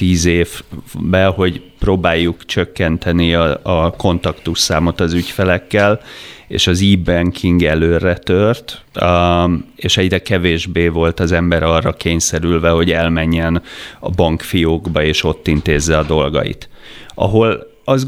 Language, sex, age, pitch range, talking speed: Hungarian, male, 30-49, 85-95 Hz, 115 wpm